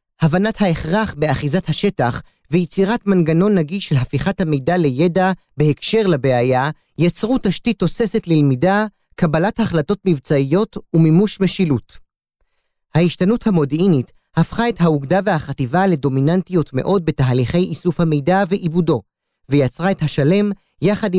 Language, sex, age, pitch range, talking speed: Hebrew, male, 30-49, 140-185 Hz, 110 wpm